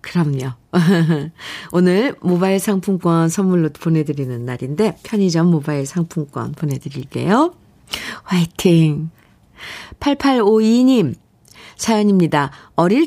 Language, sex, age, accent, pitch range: Korean, female, 50-69, native, 155-210 Hz